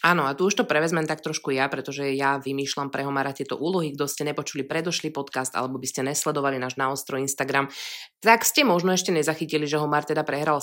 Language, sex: Slovak, female